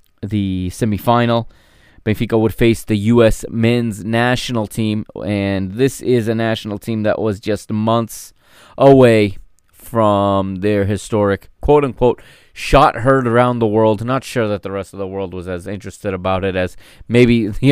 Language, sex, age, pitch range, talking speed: English, male, 20-39, 100-125 Hz, 155 wpm